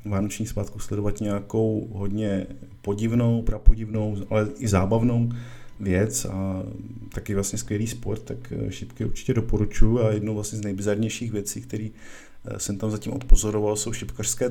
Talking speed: 135 wpm